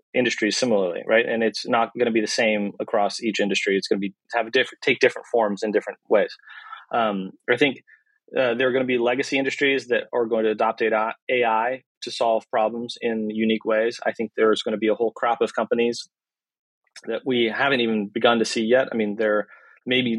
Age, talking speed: 30-49, 215 wpm